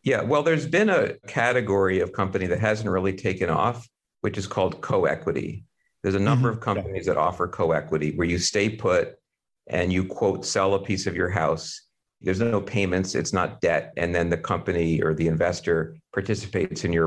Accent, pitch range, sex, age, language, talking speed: American, 90-115 Hz, male, 50-69, English, 190 wpm